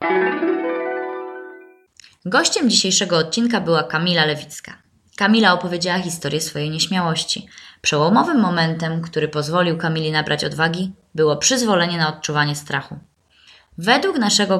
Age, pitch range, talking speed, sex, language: 20-39, 155-190 Hz, 105 wpm, female, Polish